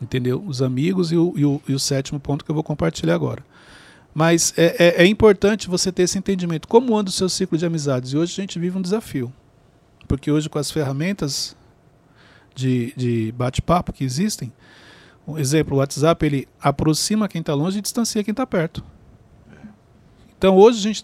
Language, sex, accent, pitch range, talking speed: Portuguese, male, Brazilian, 145-190 Hz, 190 wpm